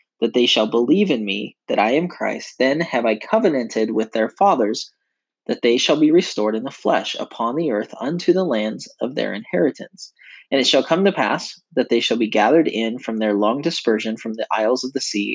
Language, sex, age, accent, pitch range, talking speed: English, male, 20-39, American, 110-145 Hz, 220 wpm